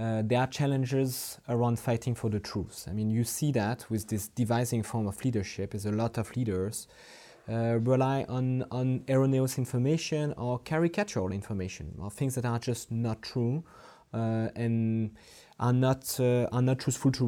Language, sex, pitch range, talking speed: English, male, 115-135 Hz, 175 wpm